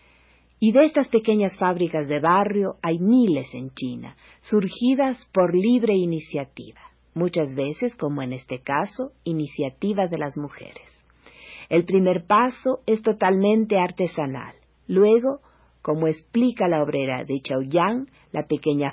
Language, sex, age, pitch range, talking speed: Spanish, female, 50-69, 145-195 Hz, 125 wpm